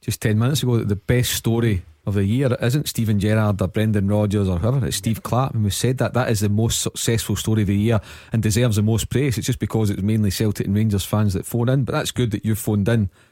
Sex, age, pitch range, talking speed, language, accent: male, 30-49, 105-125 Hz, 270 wpm, English, British